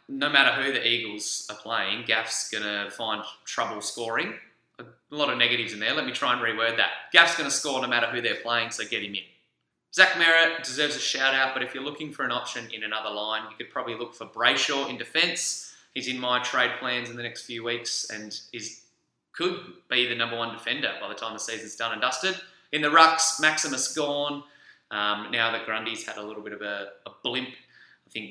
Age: 20-39